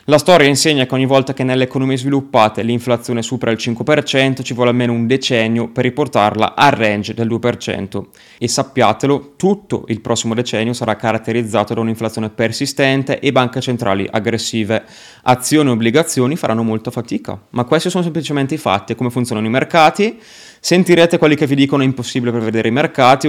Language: Italian